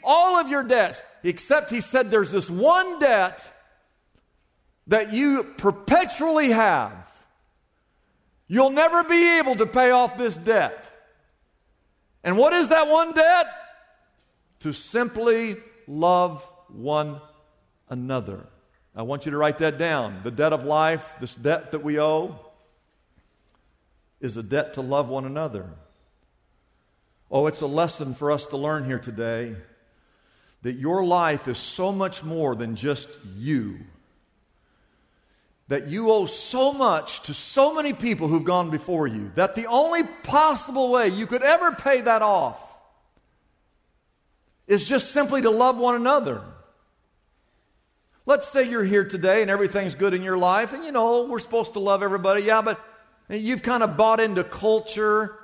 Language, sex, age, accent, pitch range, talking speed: English, male, 50-69, American, 150-245 Hz, 145 wpm